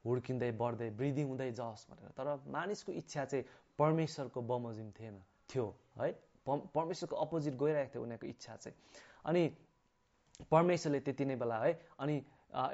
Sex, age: male, 30-49